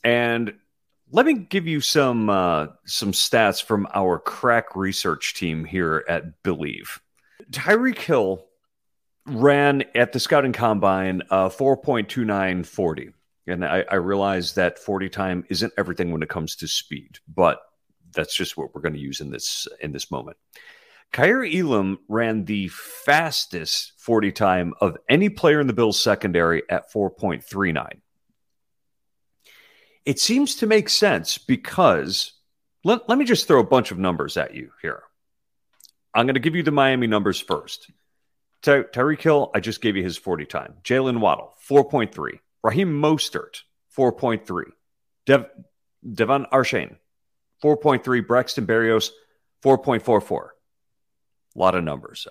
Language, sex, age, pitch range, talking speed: English, male, 40-59, 95-140 Hz, 140 wpm